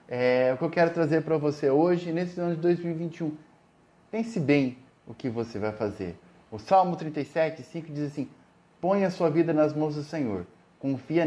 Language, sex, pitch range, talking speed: Portuguese, male, 115-155 Hz, 185 wpm